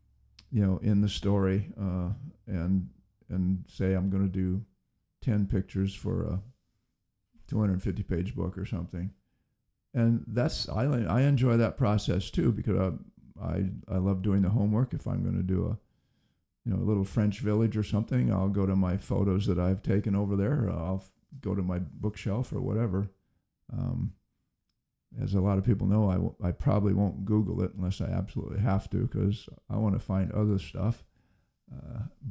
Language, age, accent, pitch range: English, 50-69, American, 95-115 Hz